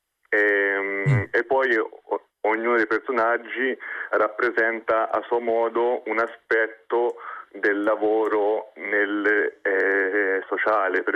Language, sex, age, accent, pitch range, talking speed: Italian, male, 30-49, native, 105-110 Hz, 100 wpm